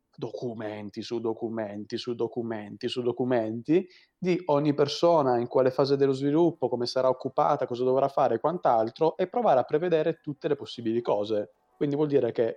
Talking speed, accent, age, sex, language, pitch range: 165 wpm, native, 30-49, male, Italian, 110-145 Hz